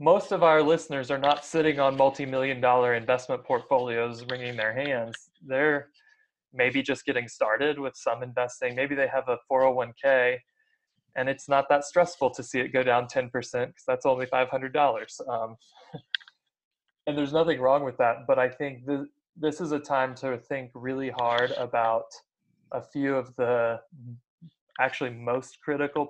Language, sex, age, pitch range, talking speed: English, male, 20-39, 125-145 Hz, 160 wpm